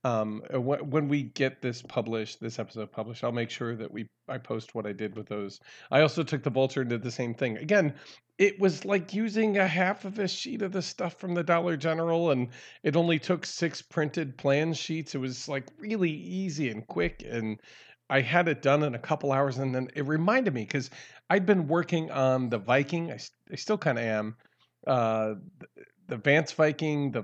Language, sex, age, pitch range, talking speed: English, male, 40-59, 120-165 Hz, 210 wpm